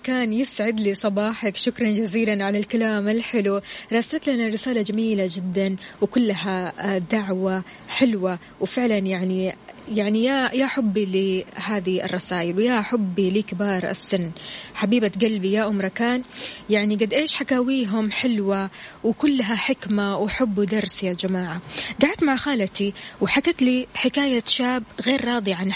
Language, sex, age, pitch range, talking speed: Arabic, female, 20-39, 200-260 Hz, 130 wpm